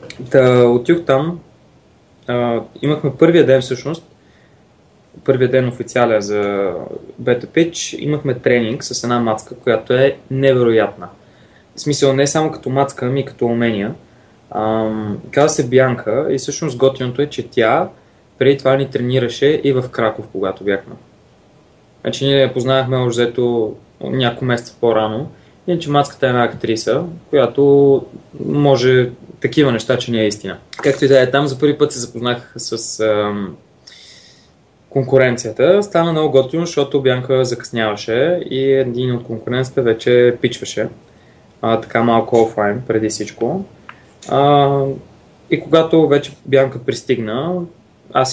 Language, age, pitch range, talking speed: Bulgarian, 20-39, 115-140 Hz, 135 wpm